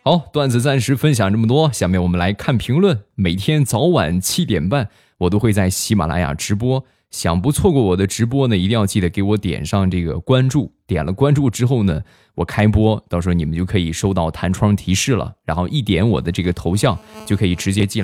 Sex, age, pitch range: male, 20-39, 90-130 Hz